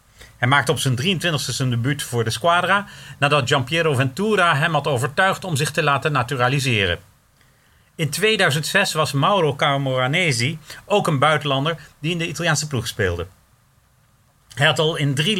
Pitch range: 125-160 Hz